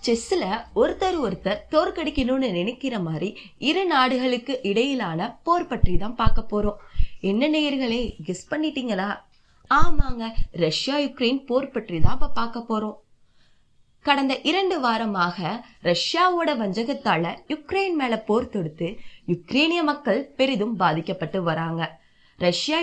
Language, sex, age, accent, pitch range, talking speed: Tamil, female, 20-39, native, 200-290 Hz, 55 wpm